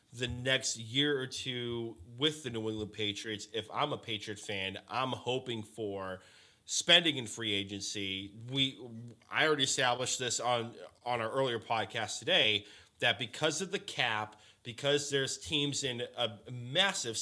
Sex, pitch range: male, 110-140 Hz